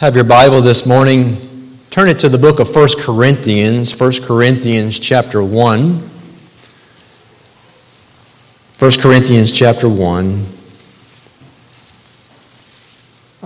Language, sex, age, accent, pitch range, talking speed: English, male, 40-59, American, 120-145 Hz, 95 wpm